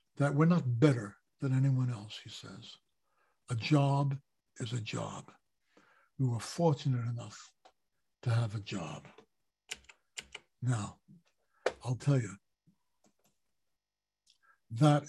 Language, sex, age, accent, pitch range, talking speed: English, male, 60-79, American, 130-155 Hz, 105 wpm